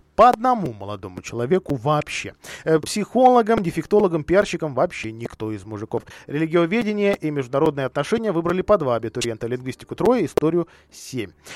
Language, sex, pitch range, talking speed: Russian, male, 130-190 Hz, 125 wpm